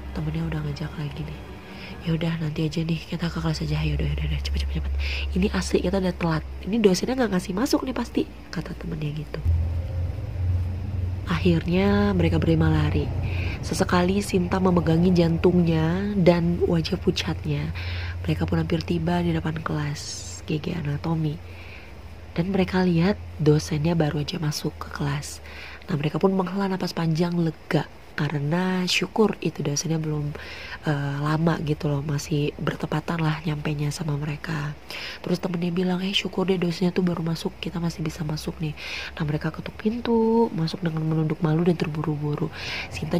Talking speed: 155 wpm